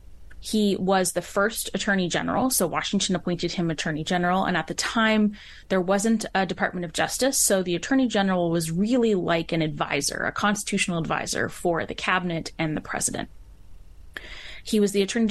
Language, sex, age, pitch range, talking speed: English, female, 20-39, 170-205 Hz, 175 wpm